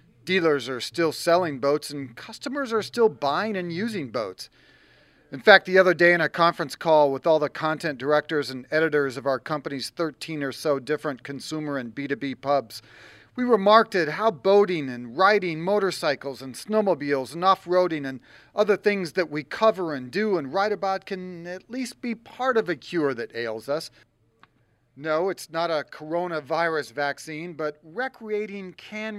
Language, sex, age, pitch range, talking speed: English, male, 40-59, 140-195 Hz, 170 wpm